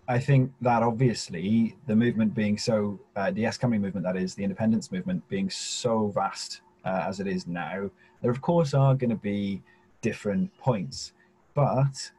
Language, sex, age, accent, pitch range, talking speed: English, male, 30-49, British, 110-135 Hz, 170 wpm